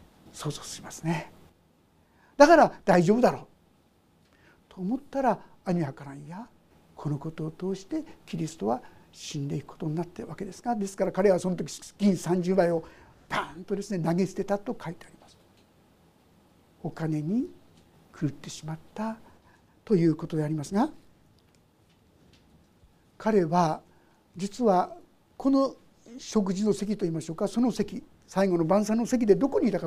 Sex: male